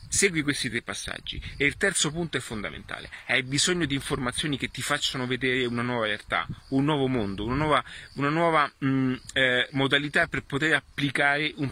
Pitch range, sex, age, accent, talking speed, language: 115-140 Hz, male, 30-49, native, 180 wpm, Italian